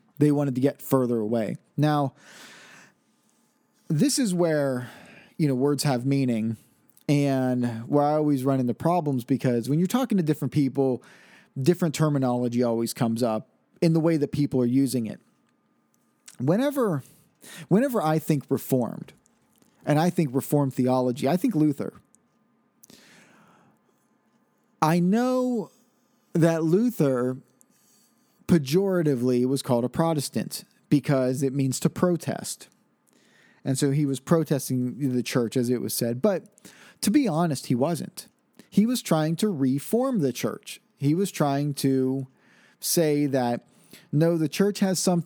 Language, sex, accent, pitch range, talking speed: English, male, American, 135-190 Hz, 140 wpm